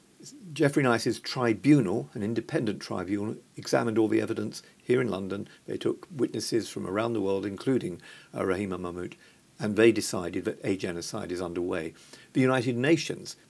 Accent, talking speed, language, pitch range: British, 155 wpm, English, 100-135 Hz